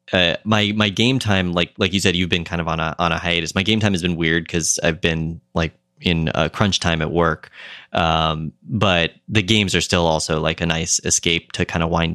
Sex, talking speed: male, 240 wpm